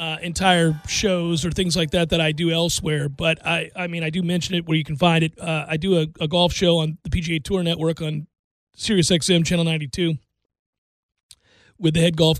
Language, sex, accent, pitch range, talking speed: English, male, American, 155-195 Hz, 220 wpm